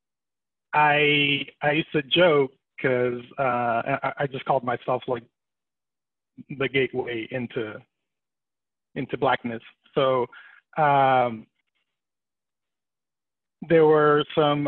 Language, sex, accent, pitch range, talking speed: English, male, American, 130-170 Hz, 90 wpm